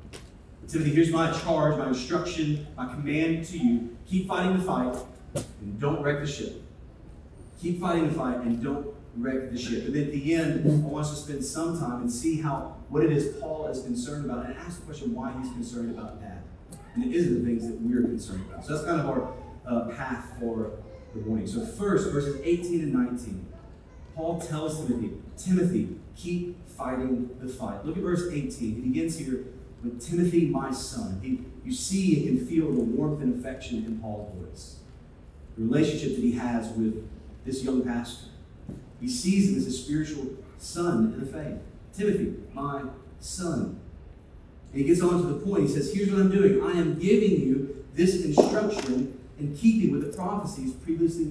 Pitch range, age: 120-165 Hz, 30-49